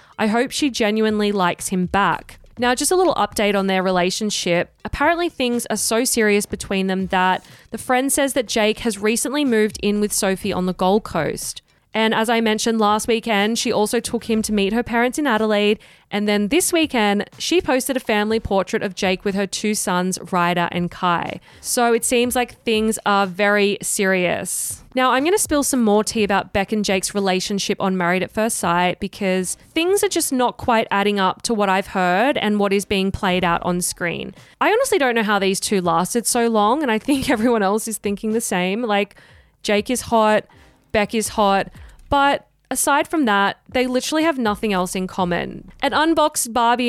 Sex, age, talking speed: female, 20-39, 200 wpm